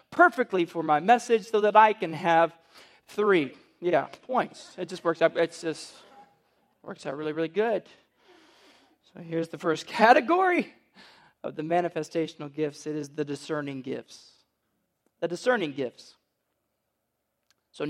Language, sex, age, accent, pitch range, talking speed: English, male, 40-59, American, 155-215 Hz, 135 wpm